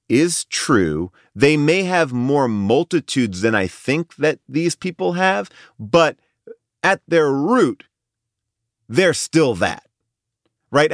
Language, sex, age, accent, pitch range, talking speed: English, male, 30-49, American, 115-170 Hz, 120 wpm